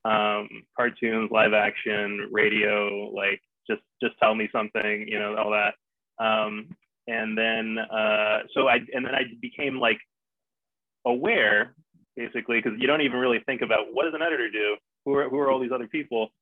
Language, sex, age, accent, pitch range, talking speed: English, male, 20-39, American, 110-125 Hz, 175 wpm